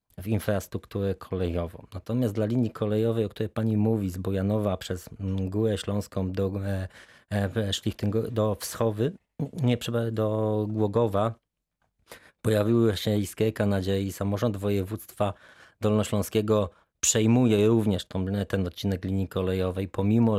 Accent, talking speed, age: native, 110 wpm, 20-39